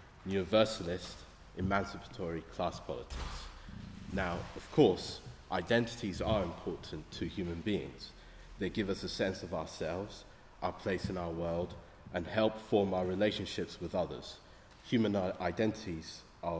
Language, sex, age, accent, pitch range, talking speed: English, male, 30-49, British, 85-100 Hz, 125 wpm